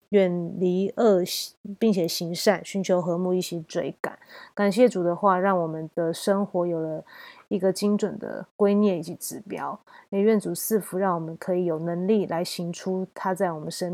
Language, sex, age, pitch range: Chinese, female, 20-39, 175-200 Hz